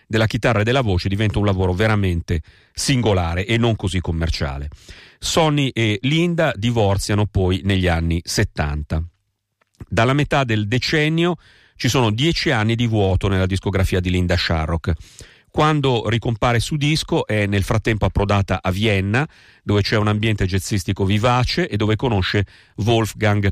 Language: Italian